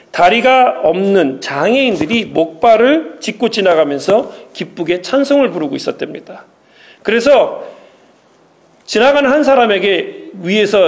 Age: 40-59